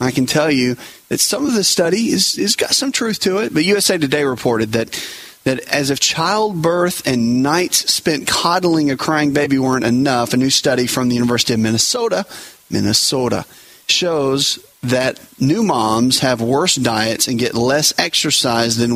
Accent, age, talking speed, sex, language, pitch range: American, 30-49, 175 wpm, male, English, 120-145 Hz